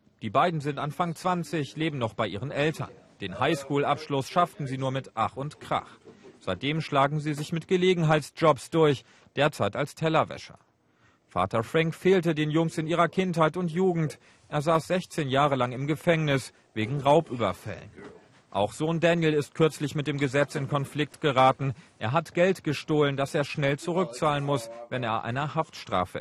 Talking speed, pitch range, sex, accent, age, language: 165 wpm, 115-155 Hz, male, German, 40-59, German